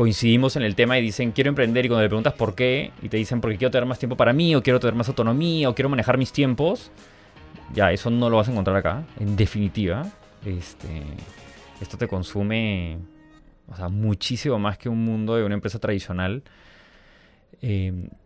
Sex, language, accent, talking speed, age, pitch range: male, Spanish, Mexican, 195 wpm, 20-39, 100-125 Hz